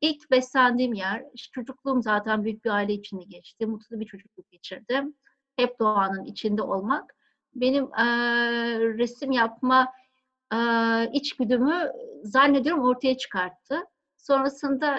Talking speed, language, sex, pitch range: 115 wpm, Turkish, female, 230-270 Hz